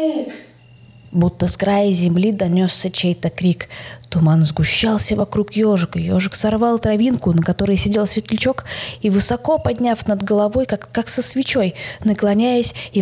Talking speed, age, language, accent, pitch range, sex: 135 wpm, 20-39, Russian, native, 170-230 Hz, female